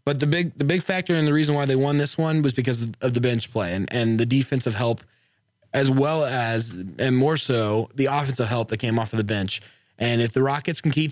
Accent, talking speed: American, 250 wpm